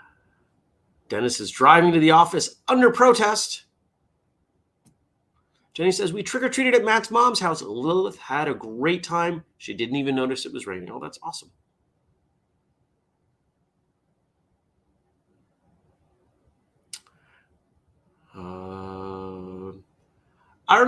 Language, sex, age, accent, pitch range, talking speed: English, male, 30-49, American, 125-190 Hz, 100 wpm